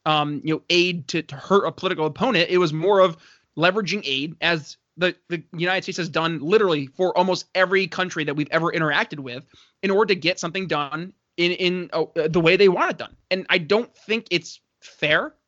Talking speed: 210 wpm